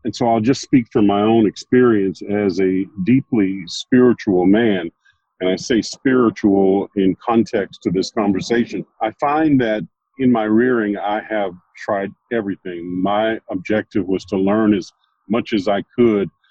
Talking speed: 155 wpm